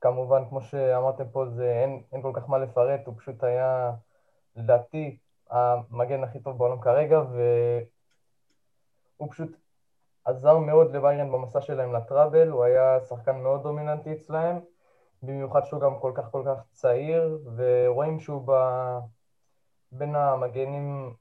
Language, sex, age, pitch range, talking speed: Hebrew, male, 20-39, 125-150 Hz, 135 wpm